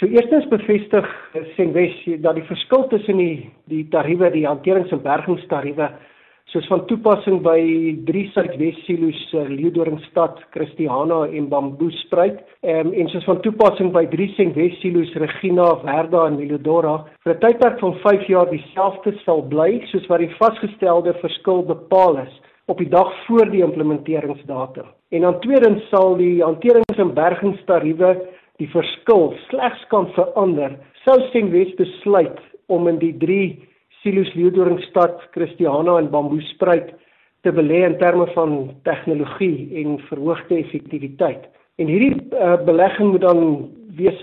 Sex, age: male, 50-69